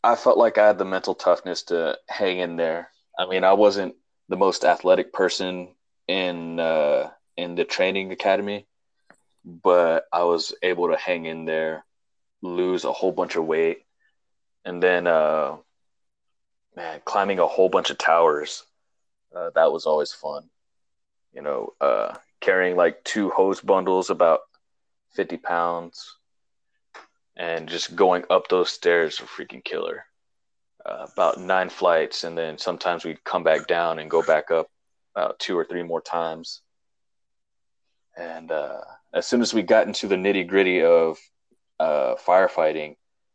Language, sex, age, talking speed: English, male, 20-39, 150 wpm